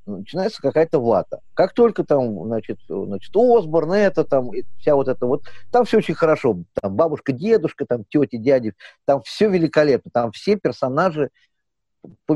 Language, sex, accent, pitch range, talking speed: Russian, male, native, 115-165 Hz, 155 wpm